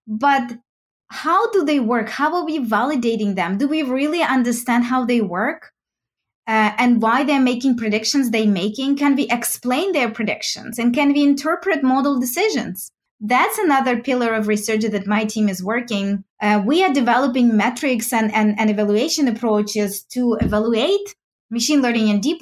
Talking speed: 165 wpm